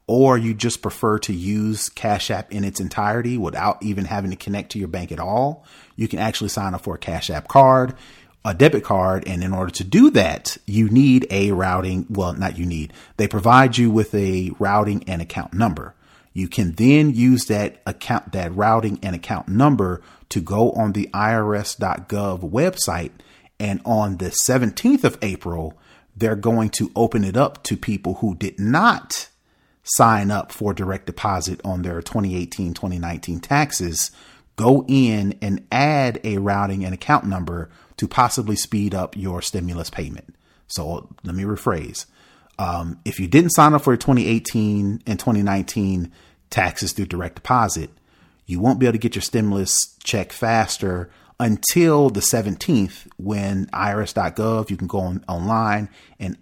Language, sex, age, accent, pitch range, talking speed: English, male, 30-49, American, 90-115 Hz, 165 wpm